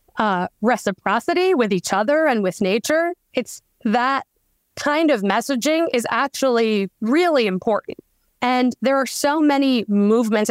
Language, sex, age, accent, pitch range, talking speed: English, female, 20-39, American, 205-250 Hz, 130 wpm